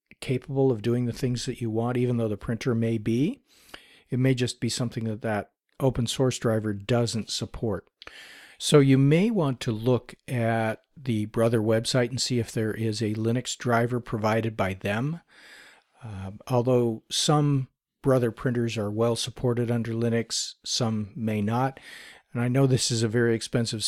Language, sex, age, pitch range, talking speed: English, male, 50-69, 110-130 Hz, 170 wpm